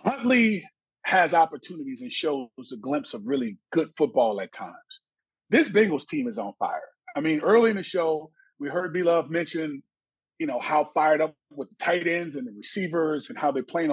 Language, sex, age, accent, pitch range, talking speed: English, male, 30-49, American, 155-215 Hz, 195 wpm